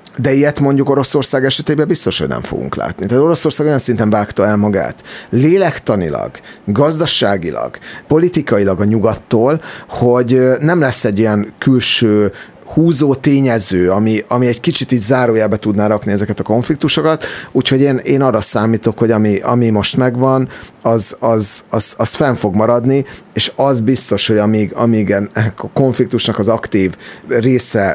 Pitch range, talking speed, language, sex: 100-130 Hz, 150 wpm, Hungarian, male